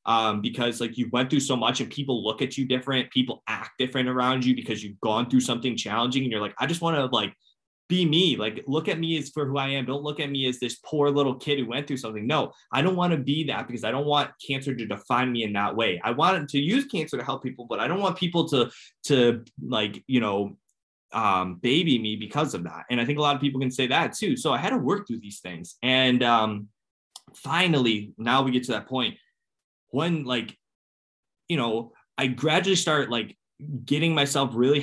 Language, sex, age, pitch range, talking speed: English, male, 20-39, 110-140 Hz, 240 wpm